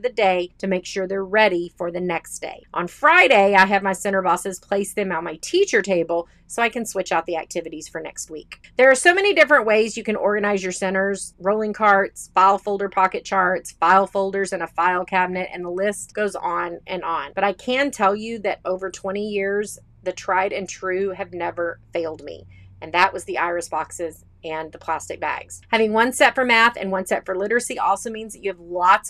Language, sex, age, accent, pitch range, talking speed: English, female, 30-49, American, 185-230 Hz, 220 wpm